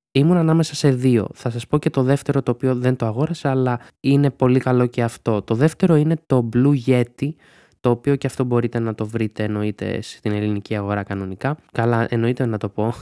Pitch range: 110-130 Hz